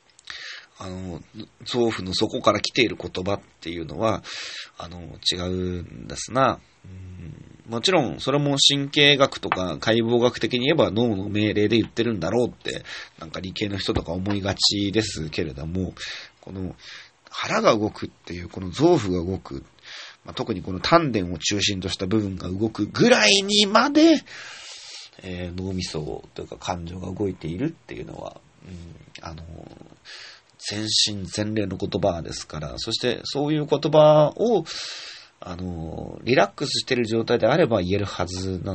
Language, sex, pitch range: Japanese, male, 90-125 Hz